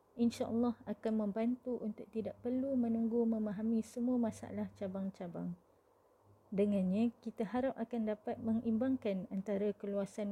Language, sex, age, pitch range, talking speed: Malay, female, 20-39, 200-235 Hz, 110 wpm